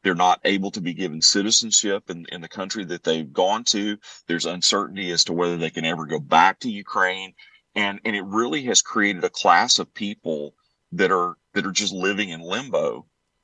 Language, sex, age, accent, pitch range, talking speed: English, male, 40-59, American, 85-105 Hz, 200 wpm